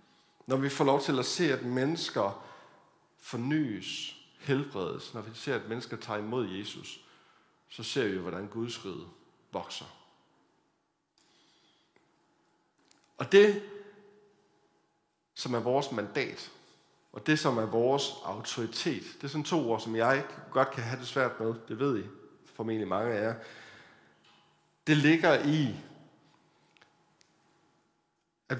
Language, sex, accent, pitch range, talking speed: Danish, male, native, 115-165 Hz, 130 wpm